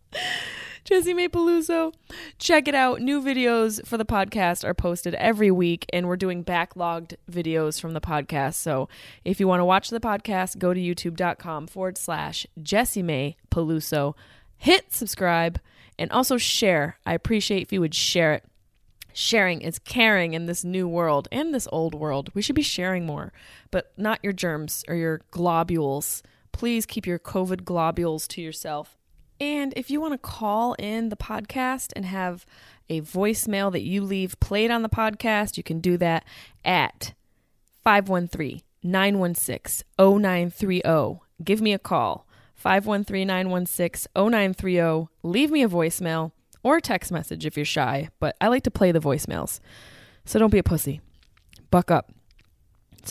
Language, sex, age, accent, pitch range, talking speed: English, female, 20-39, American, 160-210 Hz, 175 wpm